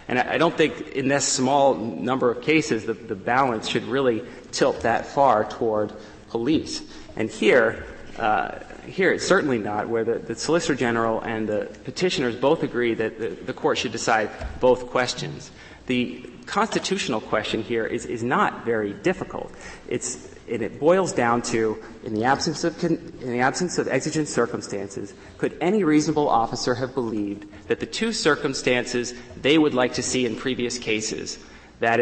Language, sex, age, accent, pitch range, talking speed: English, male, 30-49, American, 110-135 Hz, 160 wpm